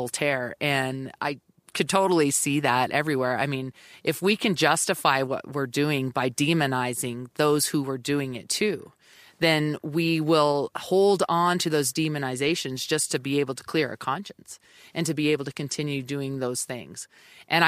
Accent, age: American, 30-49